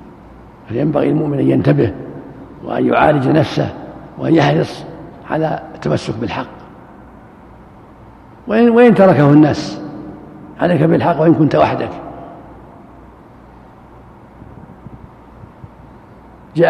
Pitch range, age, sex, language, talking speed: 150-180 Hz, 60-79, male, Arabic, 80 wpm